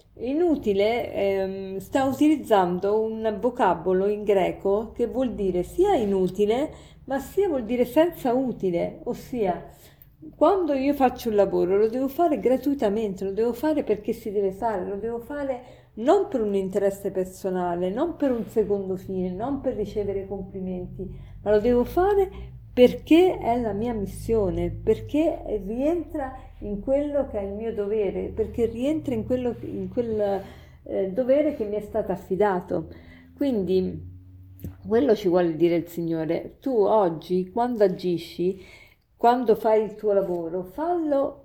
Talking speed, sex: 145 wpm, female